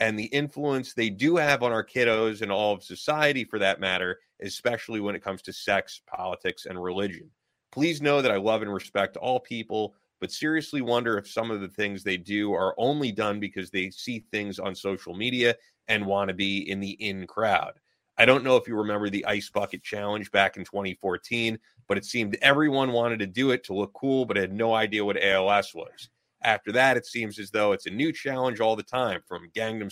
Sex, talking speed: male, 215 wpm